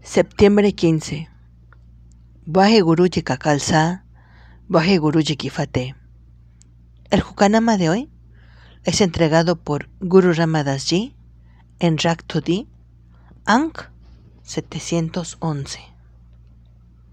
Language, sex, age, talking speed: Spanish, female, 40-59, 70 wpm